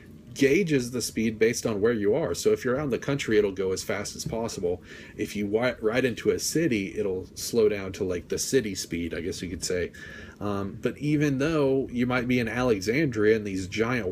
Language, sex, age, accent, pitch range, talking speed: English, male, 30-49, American, 100-130 Hz, 220 wpm